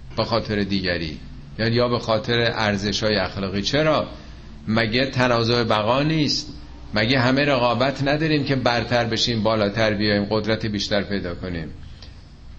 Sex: male